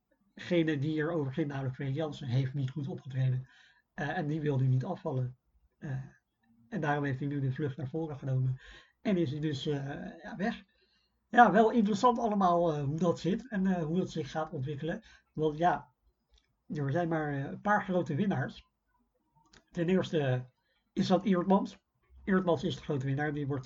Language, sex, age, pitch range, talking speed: Dutch, male, 60-79, 140-175 Hz, 180 wpm